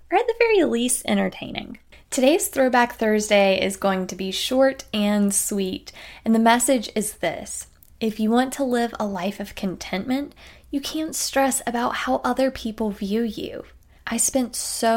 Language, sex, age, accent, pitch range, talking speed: English, female, 10-29, American, 200-250 Hz, 170 wpm